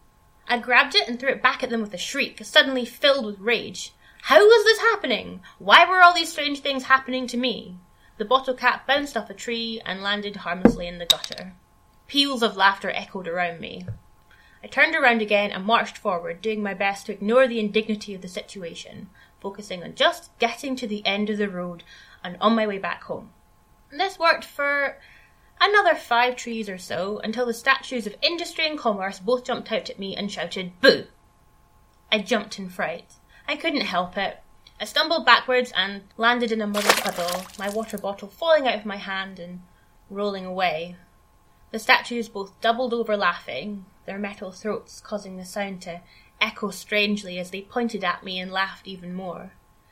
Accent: British